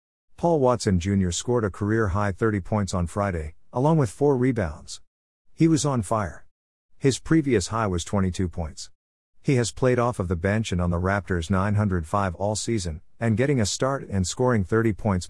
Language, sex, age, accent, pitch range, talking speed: English, male, 50-69, American, 85-115 Hz, 180 wpm